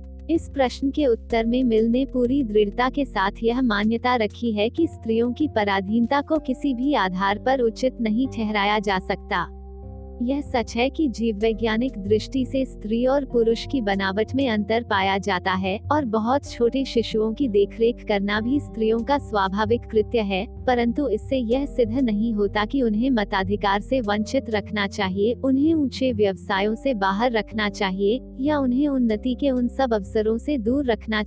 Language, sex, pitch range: Hindi, female, 205-260 Hz